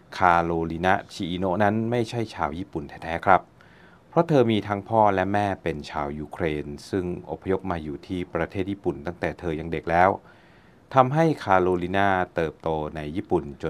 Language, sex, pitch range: Thai, male, 80-100 Hz